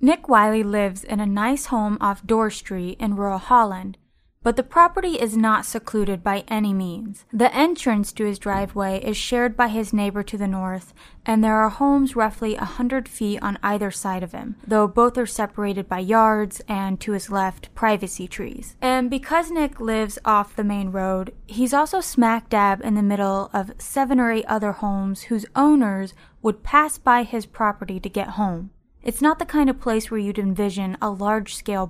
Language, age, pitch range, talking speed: English, 20-39, 195-245 Hz, 190 wpm